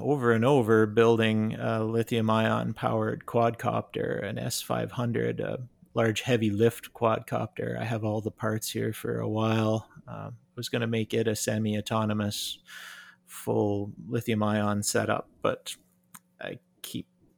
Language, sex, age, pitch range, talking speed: English, male, 30-49, 105-120 Hz, 140 wpm